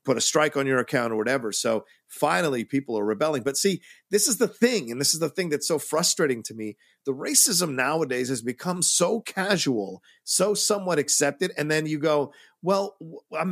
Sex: male